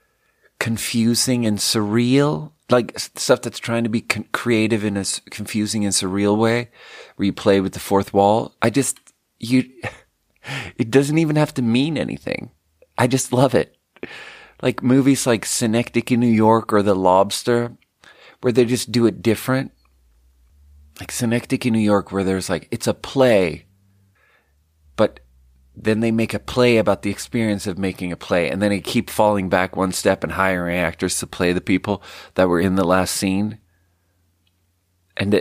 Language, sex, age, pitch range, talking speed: English, male, 30-49, 90-115 Hz, 165 wpm